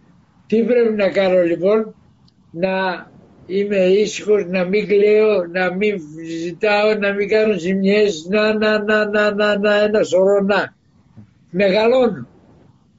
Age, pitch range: 60-79, 185-225 Hz